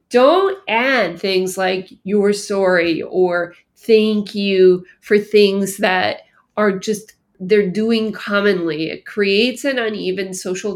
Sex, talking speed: female, 125 wpm